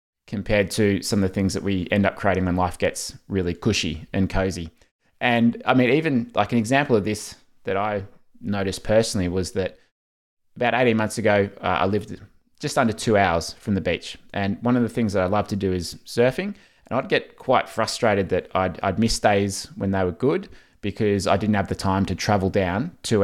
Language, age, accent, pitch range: English, 20-39, Australian, 95-110 Hz